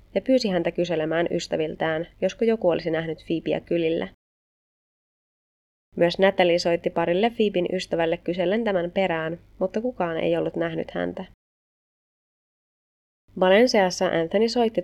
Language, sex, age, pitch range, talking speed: Finnish, female, 20-39, 160-190 Hz, 115 wpm